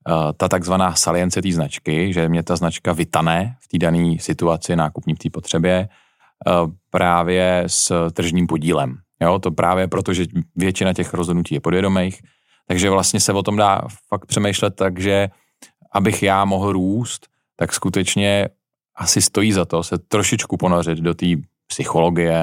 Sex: male